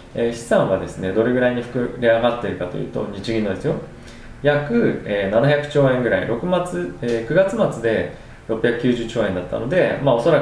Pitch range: 100-135 Hz